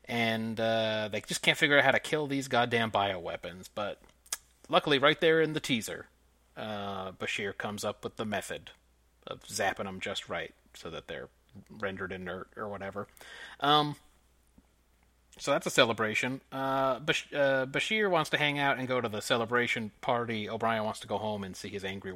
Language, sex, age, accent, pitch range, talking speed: English, male, 30-49, American, 100-130 Hz, 180 wpm